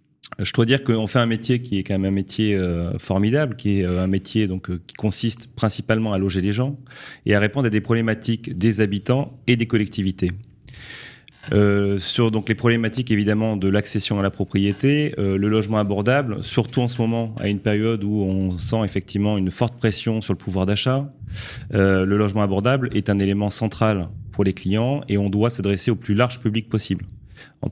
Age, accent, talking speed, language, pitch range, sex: 30-49, French, 205 wpm, French, 100-120 Hz, male